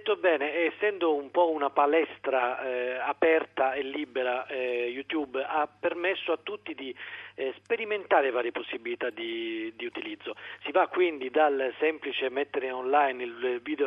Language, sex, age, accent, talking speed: Italian, male, 40-59, native, 145 wpm